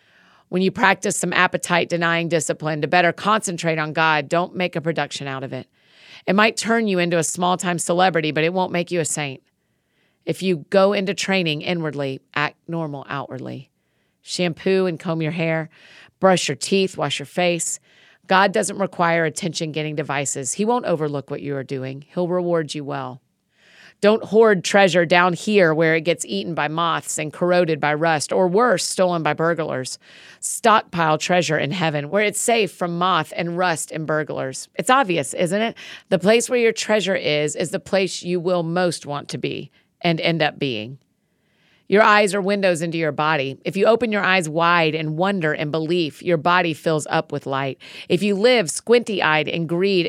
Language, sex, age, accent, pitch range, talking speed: English, female, 40-59, American, 150-190 Hz, 185 wpm